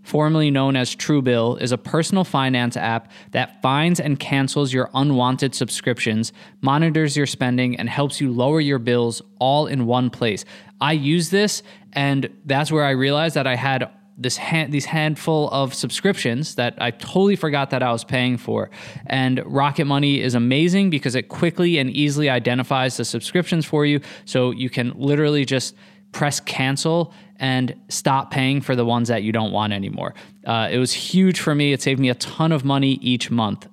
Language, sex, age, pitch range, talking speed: English, male, 20-39, 125-155 Hz, 185 wpm